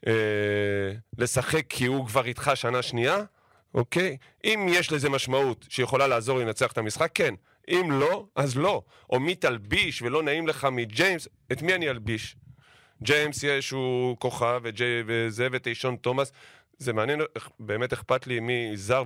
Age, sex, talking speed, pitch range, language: 30-49, male, 150 wpm, 115-145 Hz, Hebrew